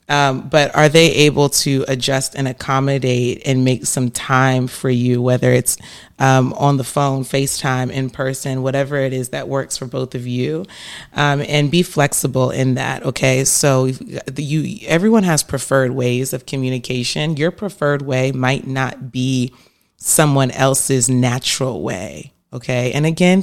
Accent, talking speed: American, 155 wpm